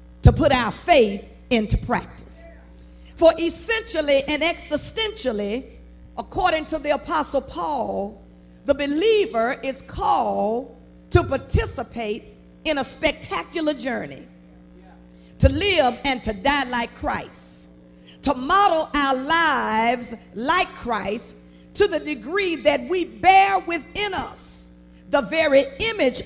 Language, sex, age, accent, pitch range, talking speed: English, female, 40-59, American, 220-340 Hz, 110 wpm